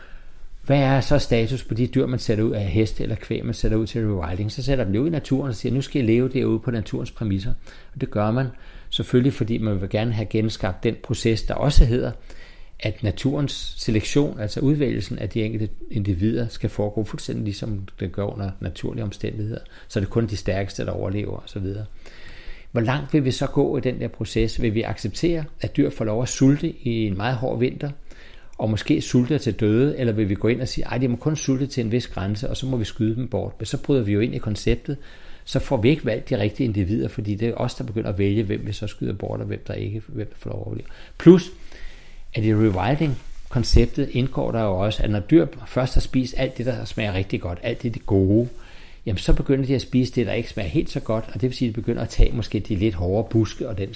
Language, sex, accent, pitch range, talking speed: Danish, male, native, 105-130 Hz, 245 wpm